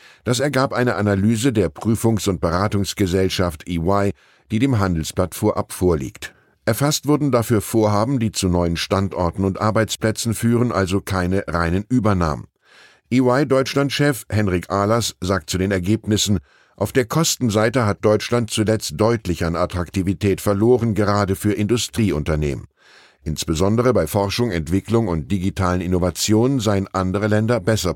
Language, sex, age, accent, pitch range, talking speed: German, male, 10-29, German, 90-115 Hz, 130 wpm